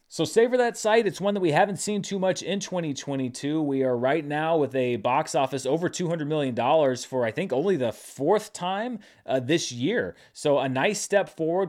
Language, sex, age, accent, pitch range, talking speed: English, male, 30-49, American, 125-175 Hz, 205 wpm